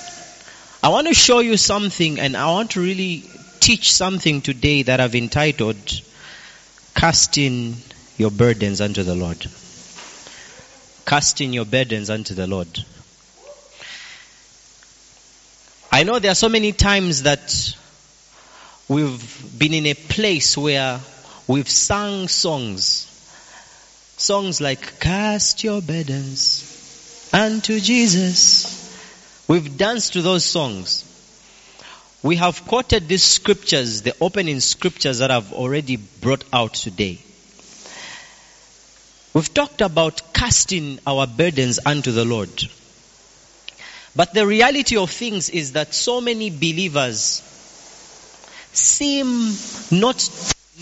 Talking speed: 110 wpm